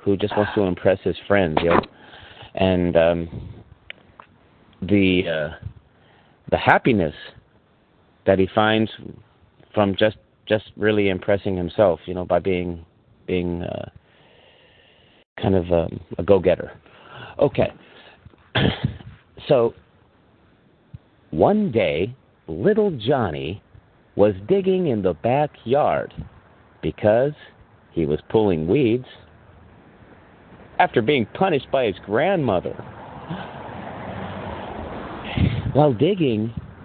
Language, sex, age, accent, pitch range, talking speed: English, male, 40-59, American, 95-125 Hz, 95 wpm